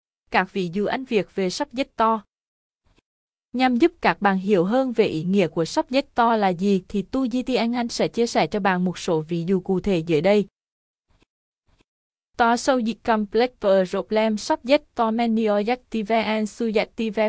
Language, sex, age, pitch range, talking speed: Vietnamese, female, 20-39, 195-240 Hz, 165 wpm